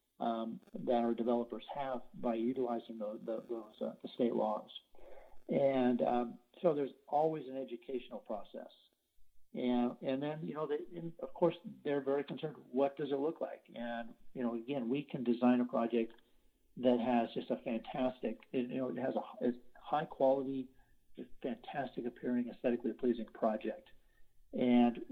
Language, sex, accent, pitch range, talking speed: English, male, American, 120-145 Hz, 155 wpm